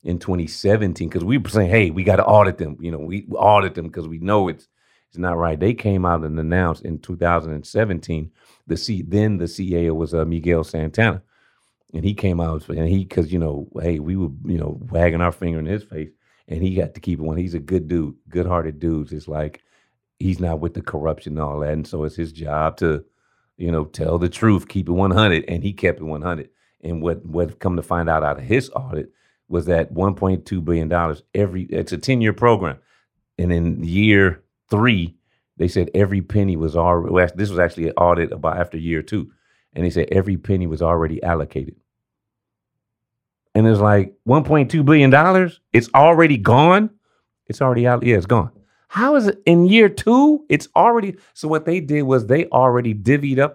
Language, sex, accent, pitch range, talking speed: English, male, American, 85-115 Hz, 205 wpm